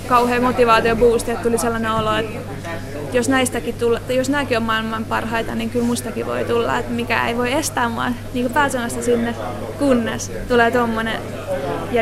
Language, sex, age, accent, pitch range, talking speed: Finnish, female, 20-39, native, 230-250 Hz, 165 wpm